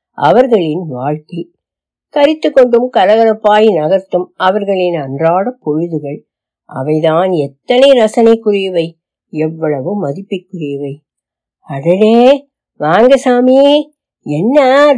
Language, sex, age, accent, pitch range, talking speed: Tamil, female, 60-79, native, 160-245 Hz, 70 wpm